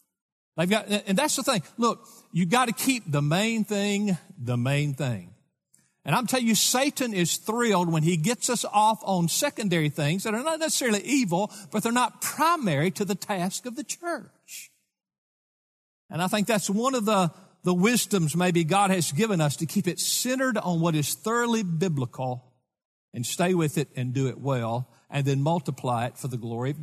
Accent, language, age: American, English, 50-69